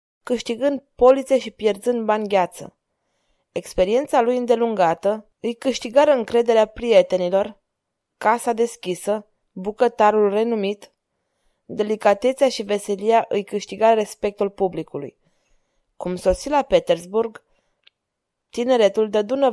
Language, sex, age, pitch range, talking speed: Romanian, female, 20-39, 205-240 Hz, 90 wpm